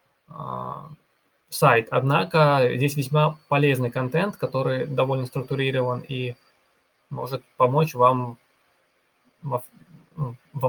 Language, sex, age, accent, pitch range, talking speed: Russian, male, 20-39, native, 120-150 Hz, 85 wpm